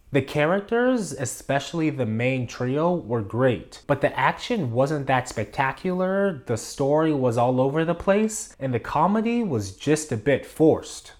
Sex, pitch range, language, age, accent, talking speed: male, 125-155 Hz, English, 20-39, American, 155 wpm